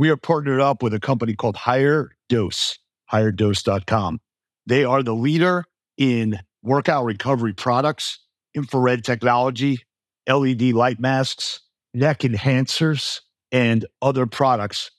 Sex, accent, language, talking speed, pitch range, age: male, American, English, 115 wpm, 115-140 Hz, 50-69